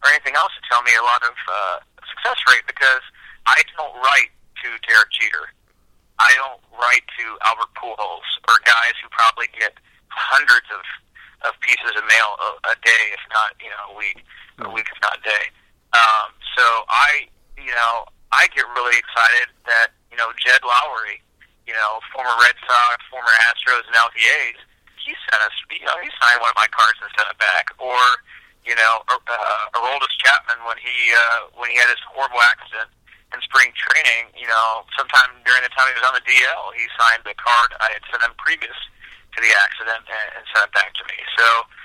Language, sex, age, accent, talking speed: English, male, 50-69, American, 200 wpm